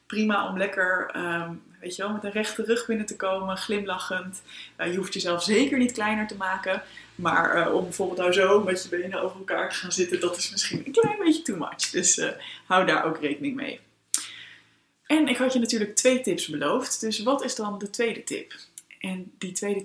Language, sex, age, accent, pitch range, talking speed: Dutch, female, 20-39, Dutch, 175-220 Hz, 210 wpm